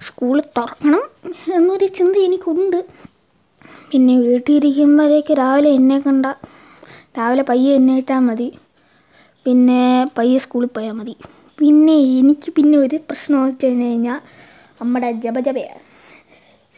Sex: female